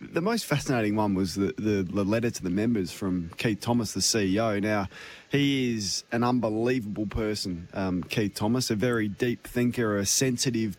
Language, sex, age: English, male, 20-39